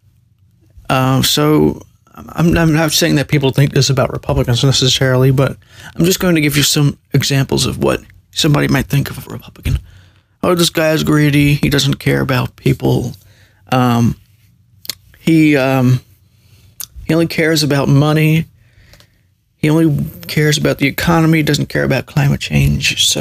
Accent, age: American, 30-49